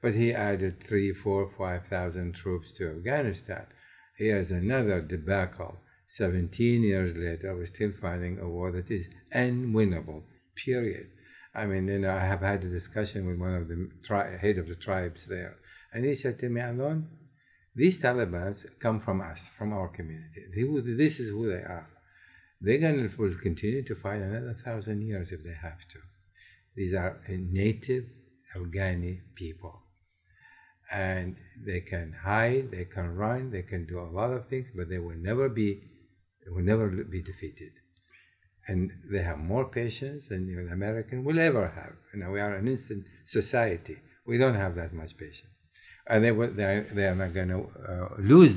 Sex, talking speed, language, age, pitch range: male, 175 wpm, English, 60-79, 90-120 Hz